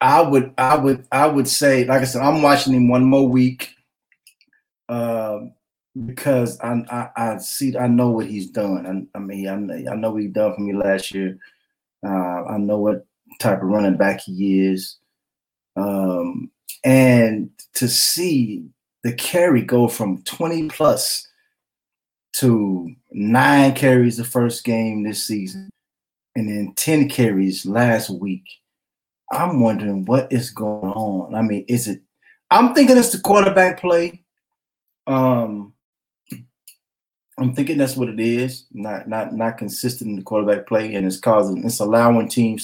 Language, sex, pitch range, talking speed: English, male, 105-135 Hz, 160 wpm